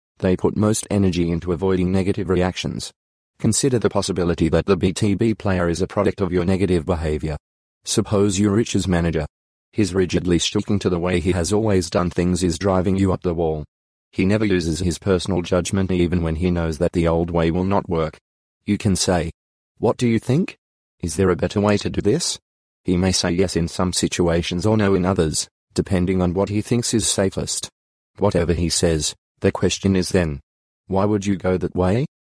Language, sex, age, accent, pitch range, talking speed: English, male, 30-49, Australian, 85-100 Hz, 195 wpm